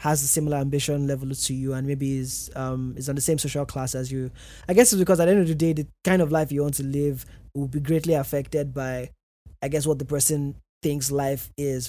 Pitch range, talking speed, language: 135-155 Hz, 250 wpm, English